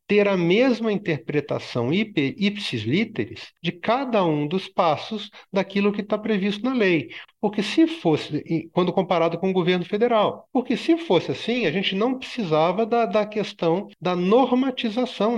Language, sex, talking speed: Portuguese, male, 155 wpm